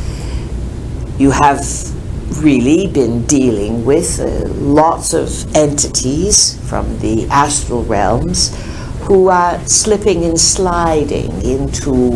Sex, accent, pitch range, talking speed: female, American, 115-150 Hz, 100 wpm